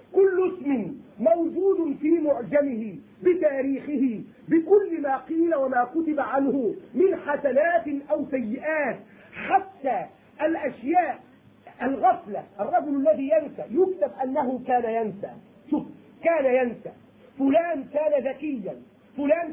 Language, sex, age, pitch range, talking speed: Arabic, male, 40-59, 250-315 Hz, 100 wpm